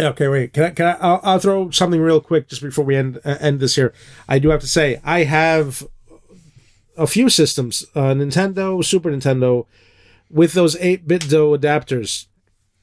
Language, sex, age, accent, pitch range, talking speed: English, male, 30-49, American, 125-160 Hz, 185 wpm